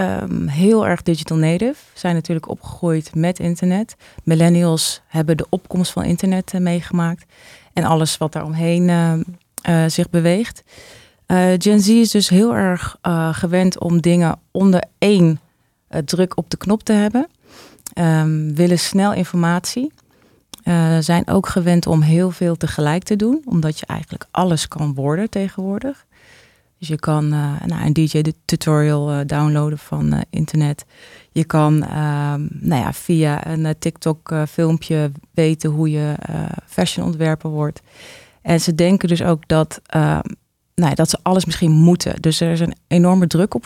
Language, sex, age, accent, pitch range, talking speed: Dutch, female, 30-49, Dutch, 160-185 Hz, 155 wpm